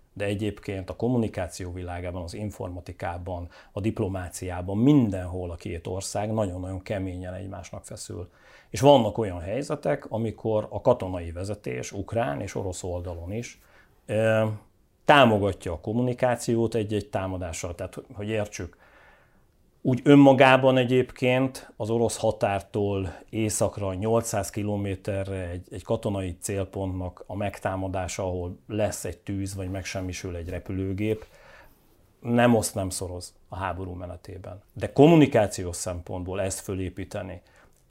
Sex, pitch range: male, 90-110 Hz